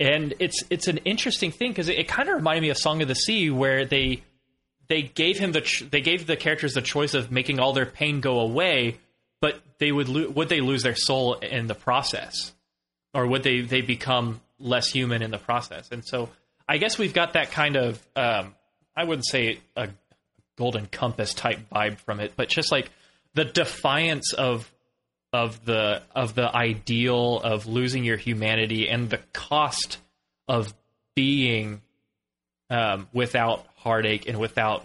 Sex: male